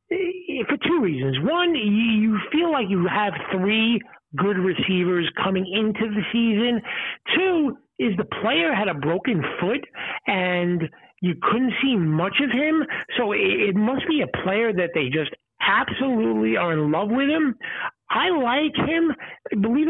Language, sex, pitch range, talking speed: English, male, 185-250 Hz, 150 wpm